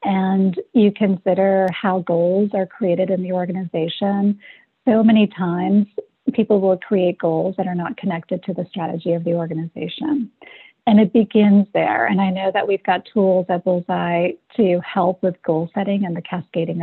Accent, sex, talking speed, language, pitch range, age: American, female, 170 wpm, English, 175-220 Hz, 40-59